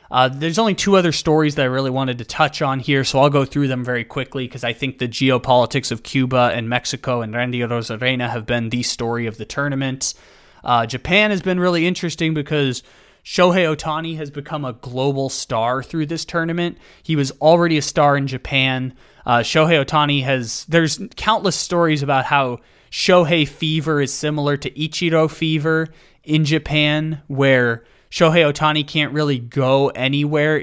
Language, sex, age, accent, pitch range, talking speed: English, male, 20-39, American, 130-160 Hz, 175 wpm